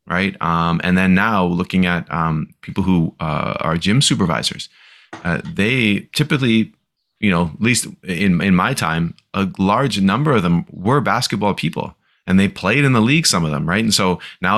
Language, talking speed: English, 190 wpm